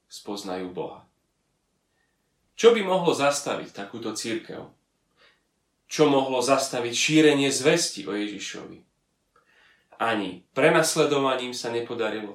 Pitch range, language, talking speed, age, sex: 115-160 Hz, Slovak, 90 wpm, 30-49, male